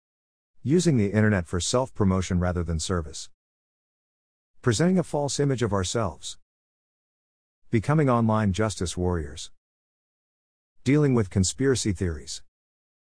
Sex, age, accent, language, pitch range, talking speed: male, 50-69, American, English, 90-115 Hz, 100 wpm